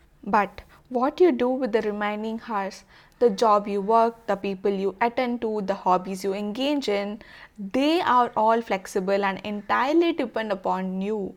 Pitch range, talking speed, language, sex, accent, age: 210-260 Hz, 165 wpm, English, female, Indian, 20-39